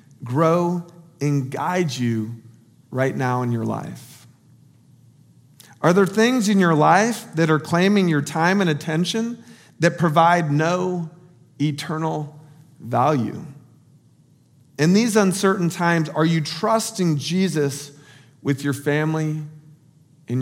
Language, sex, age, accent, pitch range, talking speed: English, male, 40-59, American, 140-175 Hz, 115 wpm